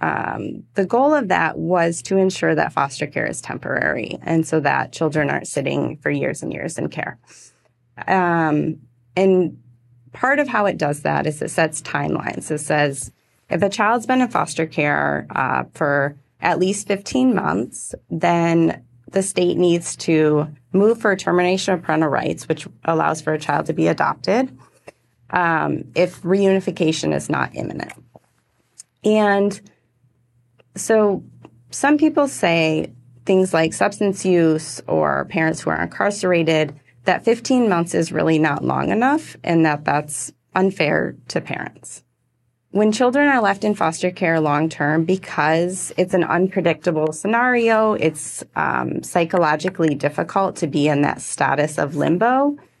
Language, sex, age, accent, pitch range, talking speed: English, female, 30-49, American, 150-195 Hz, 150 wpm